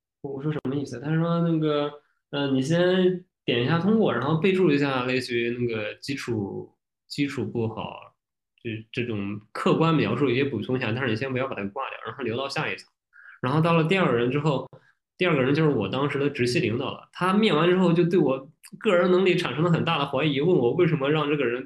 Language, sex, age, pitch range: Chinese, male, 20-39, 130-175 Hz